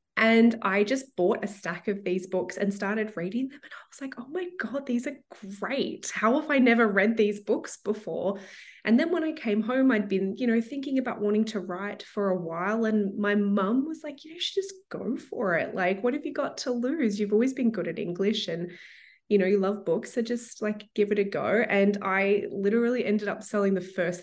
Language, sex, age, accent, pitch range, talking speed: English, female, 20-39, Australian, 180-220 Hz, 235 wpm